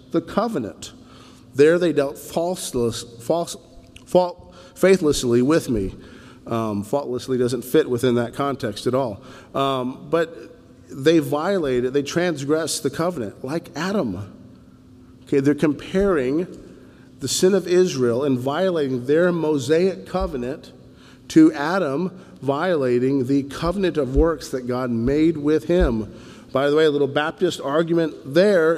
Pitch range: 125-160 Hz